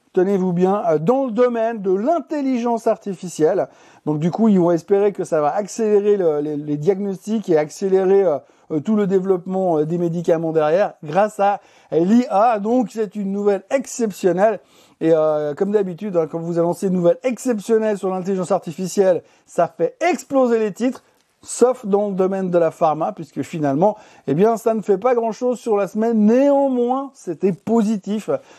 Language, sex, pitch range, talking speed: French, male, 175-220 Hz, 170 wpm